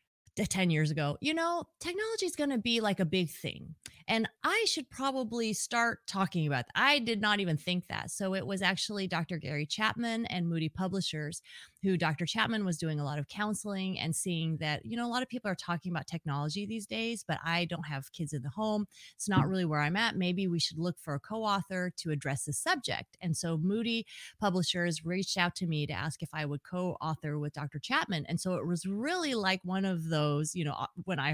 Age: 30-49